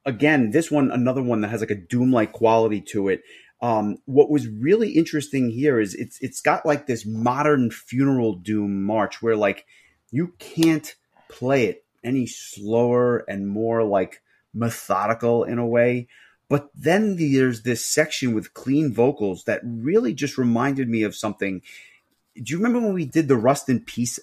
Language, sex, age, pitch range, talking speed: English, male, 30-49, 110-135 Hz, 170 wpm